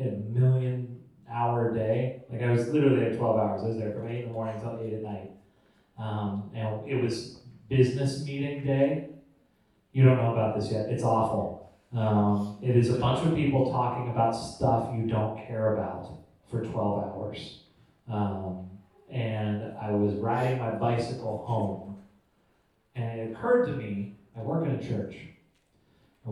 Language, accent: English, American